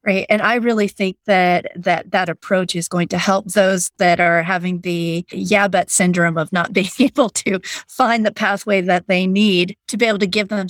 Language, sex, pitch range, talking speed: English, female, 180-210 Hz, 215 wpm